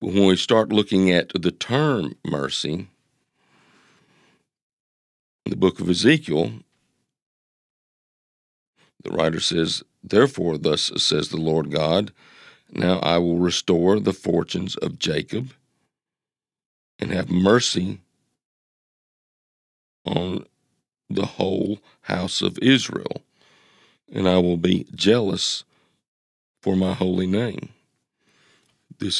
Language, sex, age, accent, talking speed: English, male, 50-69, American, 105 wpm